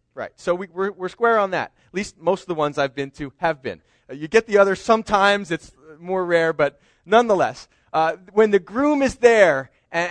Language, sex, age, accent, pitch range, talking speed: English, male, 30-49, American, 160-240 Hz, 215 wpm